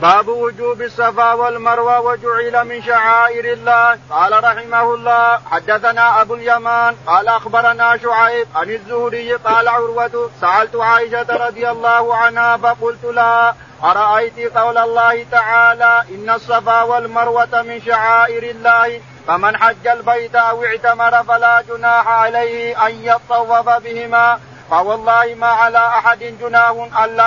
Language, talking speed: Arabic, 120 wpm